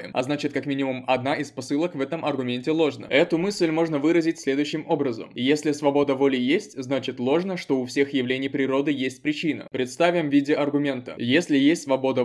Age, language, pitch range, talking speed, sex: 20-39, Russian, 135-160 Hz, 180 wpm, male